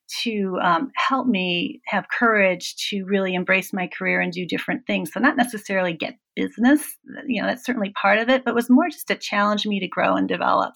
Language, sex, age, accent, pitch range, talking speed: English, female, 40-59, American, 190-250 Hz, 210 wpm